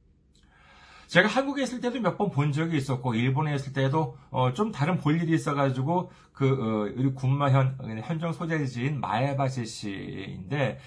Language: Korean